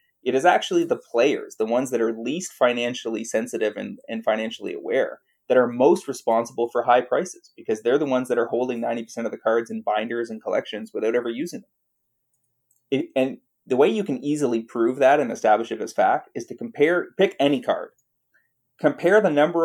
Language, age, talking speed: English, 30-49, 200 wpm